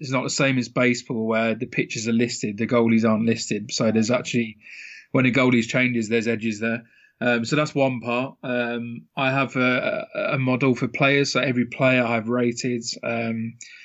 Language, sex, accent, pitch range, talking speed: English, male, British, 115-135 Hz, 190 wpm